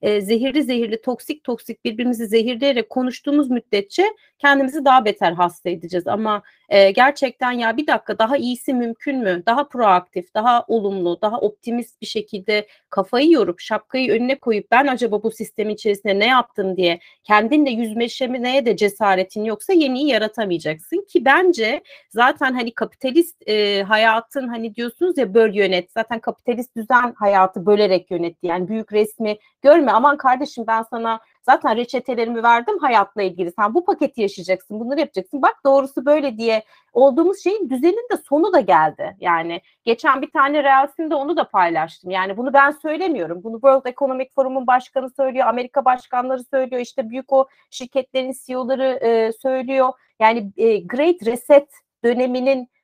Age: 40-59